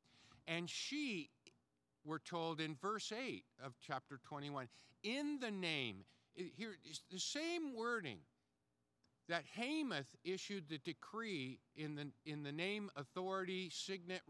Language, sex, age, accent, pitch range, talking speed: English, male, 50-69, American, 130-190 Hz, 130 wpm